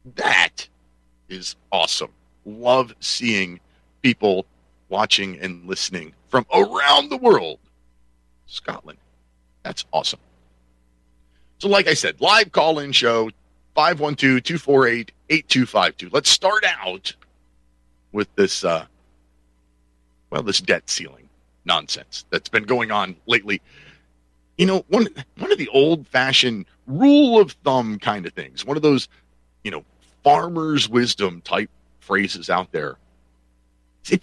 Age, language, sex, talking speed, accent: 40-59, English, male, 110 wpm, American